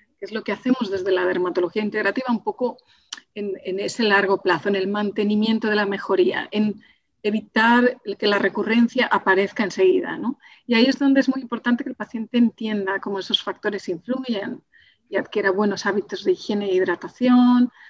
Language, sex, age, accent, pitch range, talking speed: Spanish, female, 40-59, Spanish, 200-245 Hz, 180 wpm